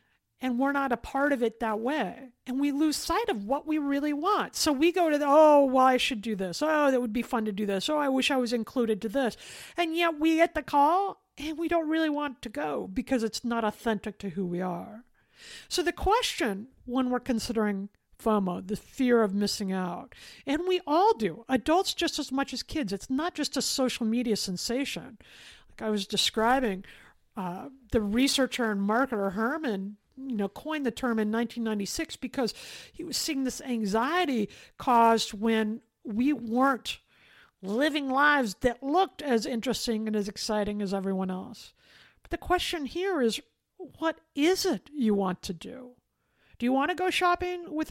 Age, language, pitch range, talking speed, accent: 50-69, English, 220-295 Hz, 190 wpm, American